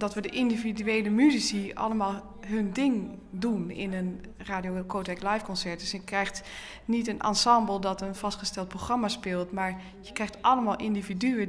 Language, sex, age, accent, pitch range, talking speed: Dutch, female, 20-39, Dutch, 185-220 Hz, 160 wpm